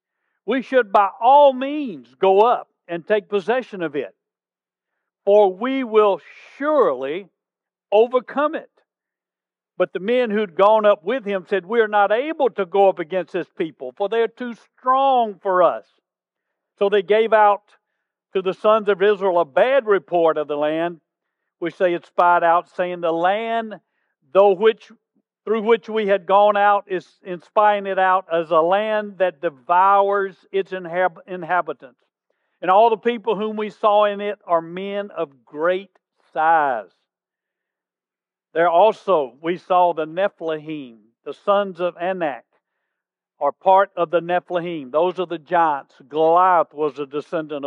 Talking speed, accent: 155 wpm, American